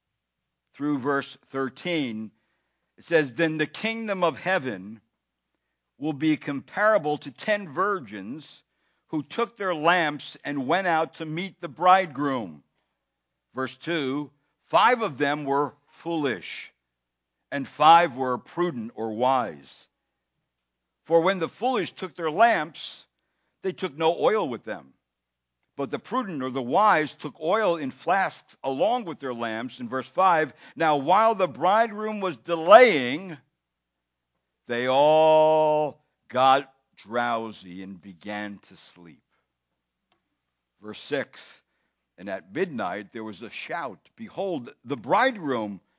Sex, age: male, 60-79